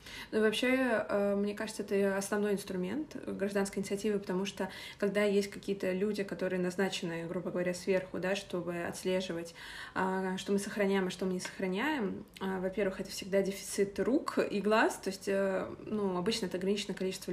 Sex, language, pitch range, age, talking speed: female, Russian, 185-210 Hz, 20-39, 155 wpm